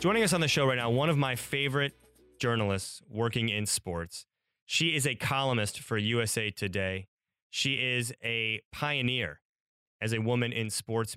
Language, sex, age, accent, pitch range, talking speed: English, male, 30-49, American, 105-125 Hz, 165 wpm